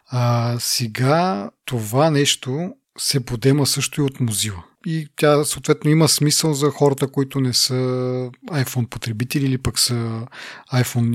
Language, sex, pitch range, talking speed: Bulgarian, male, 120-140 Hz, 140 wpm